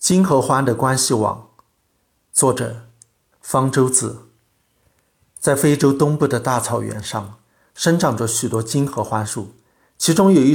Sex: male